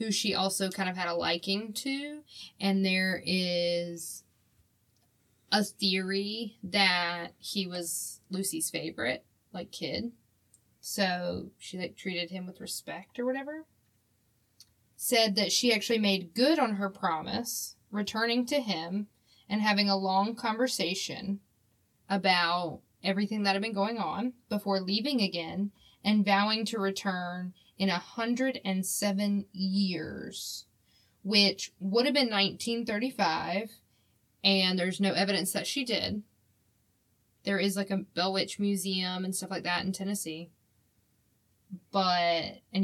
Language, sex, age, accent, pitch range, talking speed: English, female, 10-29, American, 170-205 Hz, 125 wpm